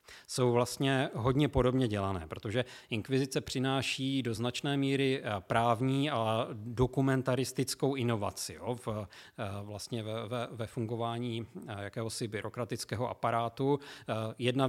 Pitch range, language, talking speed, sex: 115-135 Hz, Czech, 90 wpm, male